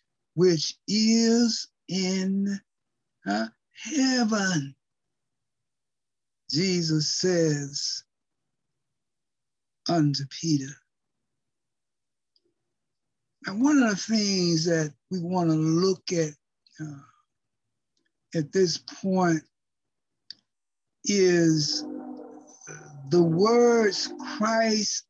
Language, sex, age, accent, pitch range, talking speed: English, male, 60-79, American, 155-220 Hz, 65 wpm